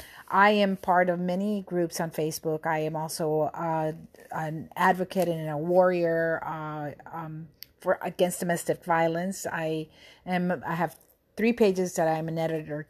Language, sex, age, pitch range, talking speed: English, female, 40-59, 160-190 Hz, 155 wpm